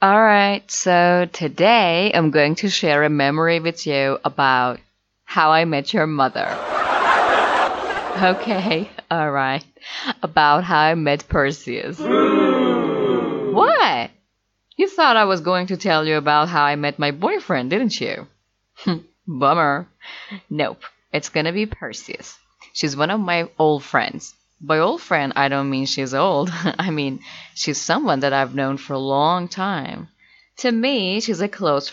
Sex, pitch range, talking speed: female, 140-210 Hz, 150 wpm